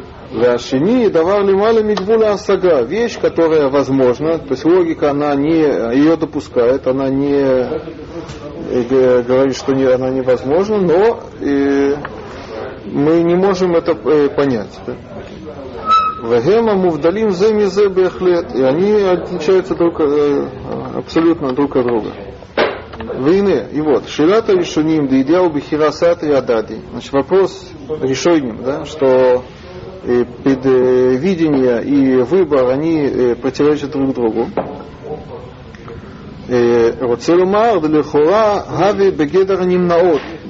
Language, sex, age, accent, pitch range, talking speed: Russian, male, 30-49, native, 130-180 Hz, 100 wpm